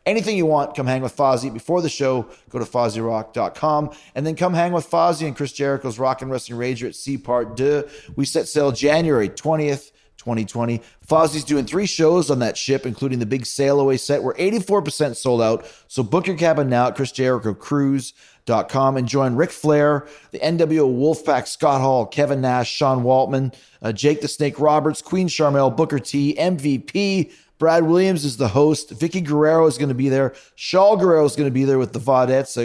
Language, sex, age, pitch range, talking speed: English, male, 30-49, 120-155 Hz, 195 wpm